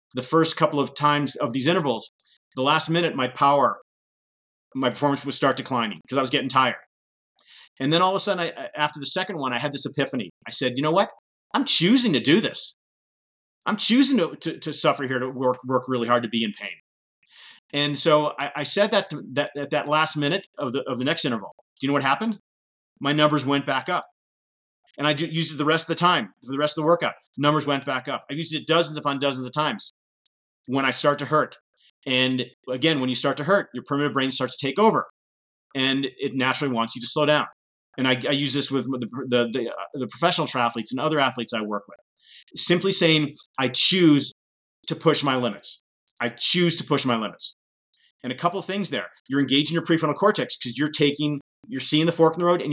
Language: English